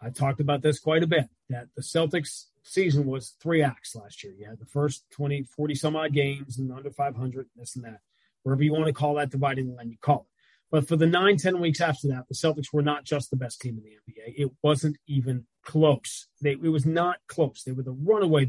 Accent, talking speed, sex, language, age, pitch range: American, 230 wpm, male, English, 30-49, 130-150 Hz